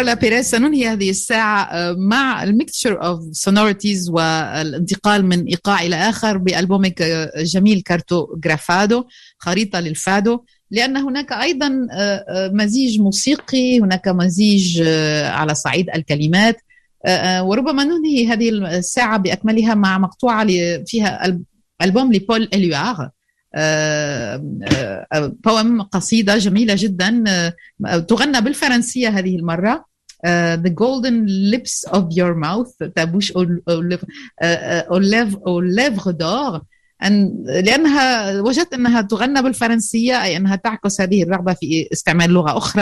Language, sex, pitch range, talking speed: Arabic, female, 175-230 Hz, 75 wpm